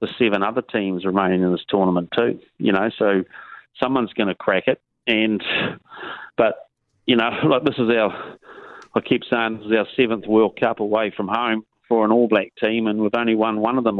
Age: 40-59